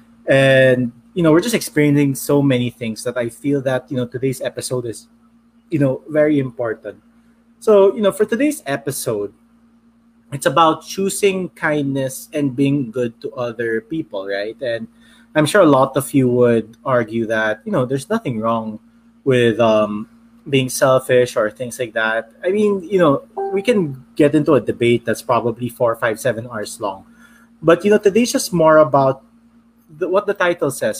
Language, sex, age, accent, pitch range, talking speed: English, male, 20-39, Filipino, 120-185 Hz, 175 wpm